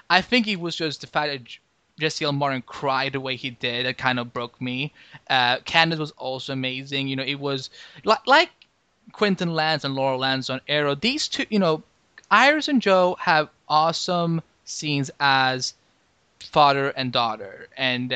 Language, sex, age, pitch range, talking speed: English, male, 20-39, 130-160 Hz, 180 wpm